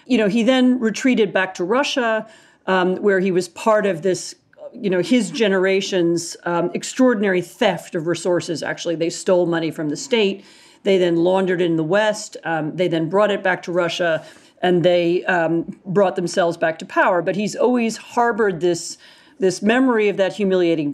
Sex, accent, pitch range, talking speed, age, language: female, American, 175-220 Hz, 180 wpm, 40-59, English